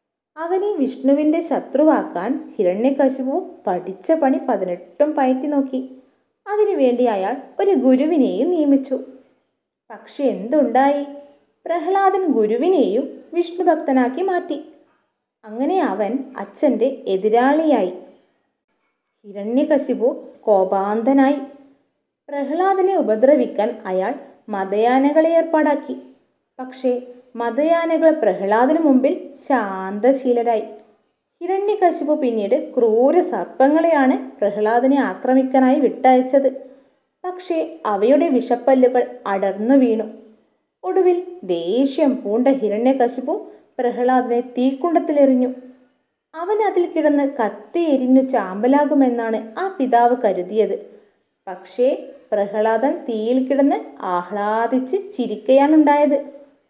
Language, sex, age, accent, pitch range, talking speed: Malayalam, female, 20-39, native, 235-300 Hz, 75 wpm